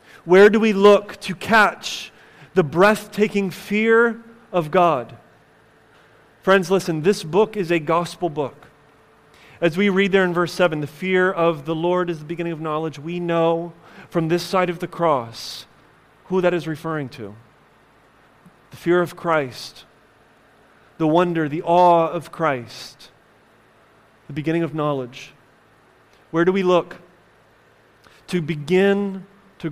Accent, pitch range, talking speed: American, 150-190 Hz, 140 wpm